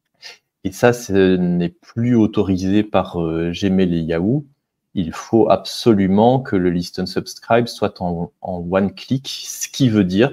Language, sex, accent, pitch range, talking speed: French, male, French, 85-105 Hz, 155 wpm